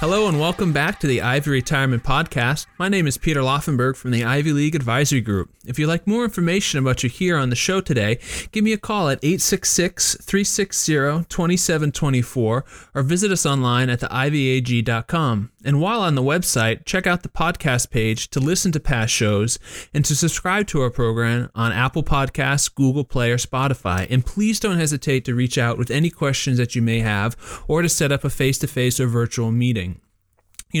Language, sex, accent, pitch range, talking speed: English, male, American, 120-160 Hz, 185 wpm